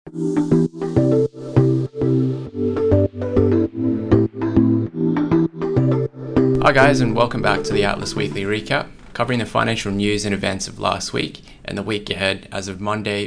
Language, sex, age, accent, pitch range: English, male, 20-39, Australian, 100-115 Hz